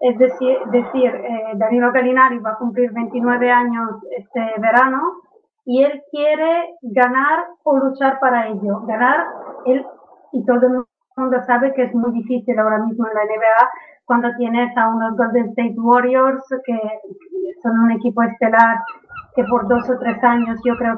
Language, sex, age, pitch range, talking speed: Spanish, female, 20-39, 230-265 Hz, 165 wpm